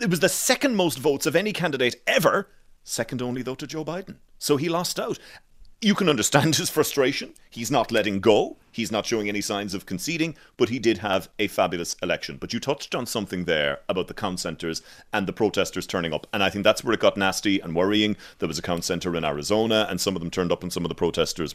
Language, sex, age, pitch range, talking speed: English, male, 30-49, 95-125 Hz, 240 wpm